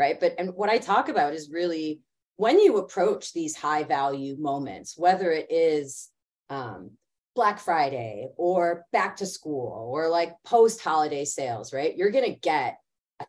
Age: 30-49